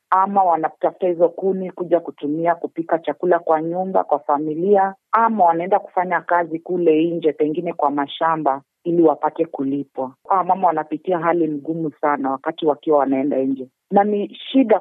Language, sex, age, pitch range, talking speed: Swahili, female, 40-59, 145-175 Hz, 145 wpm